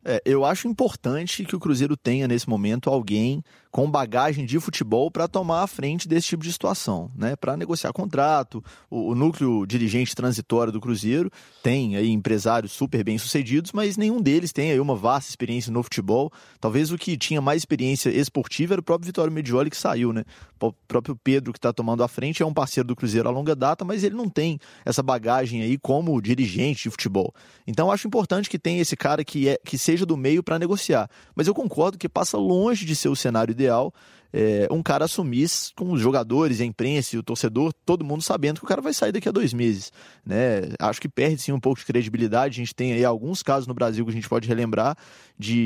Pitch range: 120-155 Hz